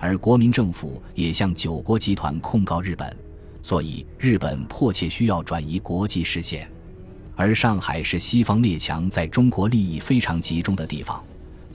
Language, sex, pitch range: Chinese, male, 80-105 Hz